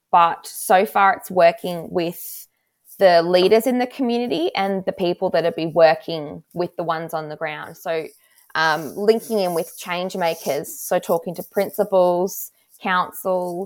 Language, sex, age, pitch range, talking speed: English, female, 20-39, 160-190 Hz, 160 wpm